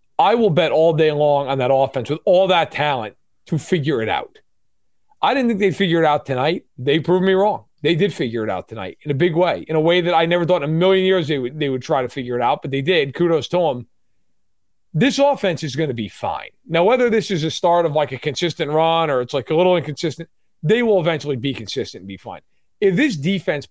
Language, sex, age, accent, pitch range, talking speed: English, male, 40-59, American, 145-190 Hz, 250 wpm